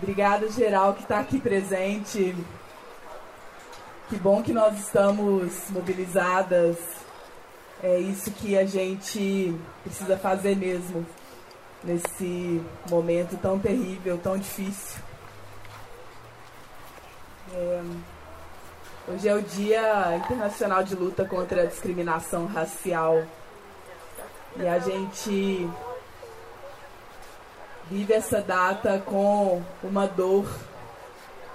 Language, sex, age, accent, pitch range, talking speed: Portuguese, female, 20-39, Brazilian, 175-205 Hz, 90 wpm